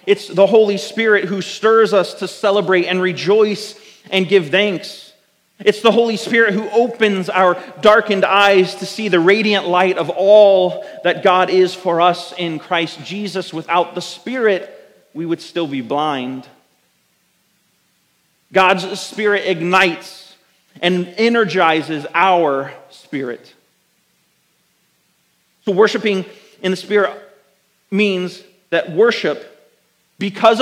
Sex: male